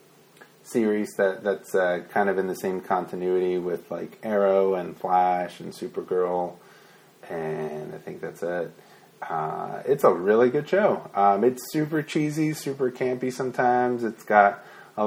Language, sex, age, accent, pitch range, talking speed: English, male, 30-49, American, 100-150 Hz, 150 wpm